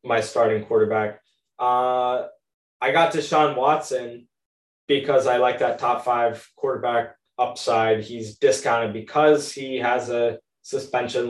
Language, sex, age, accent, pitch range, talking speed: English, male, 20-39, American, 115-150 Hz, 125 wpm